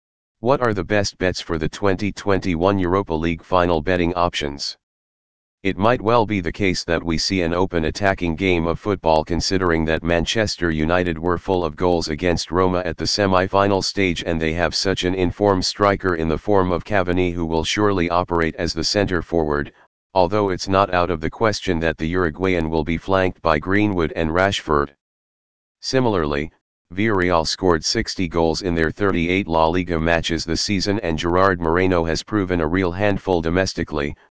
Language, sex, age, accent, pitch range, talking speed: English, male, 40-59, American, 80-95 Hz, 175 wpm